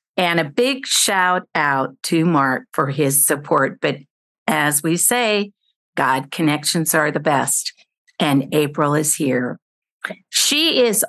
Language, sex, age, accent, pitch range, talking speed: English, female, 50-69, American, 150-210 Hz, 135 wpm